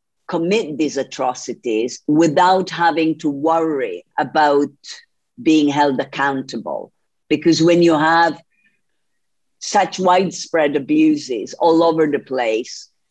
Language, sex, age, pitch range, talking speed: Swedish, female, 50-69, 135-165 Hz, 100 wpm